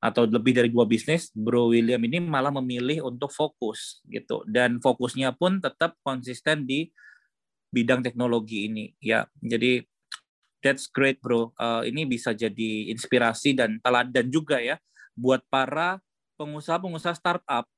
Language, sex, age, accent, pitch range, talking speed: Indonesian, male, 20-39, native, 120-160 Hz, 135 wpm